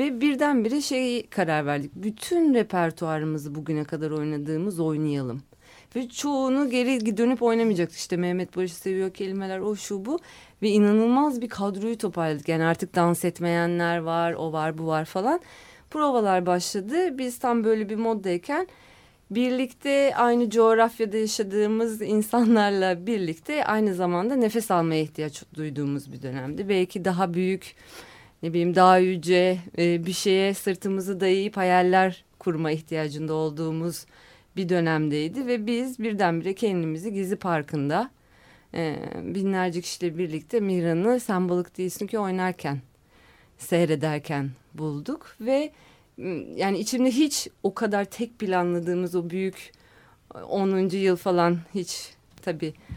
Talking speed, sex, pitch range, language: 125 wpm, female, 165-225 Hz, Turkish